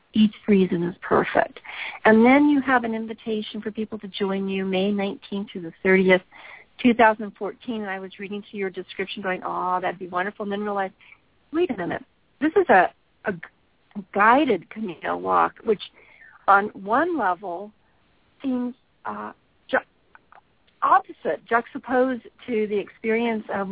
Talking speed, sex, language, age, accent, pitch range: 150 wpm, female, English, 50-69, American, 190-235 Hz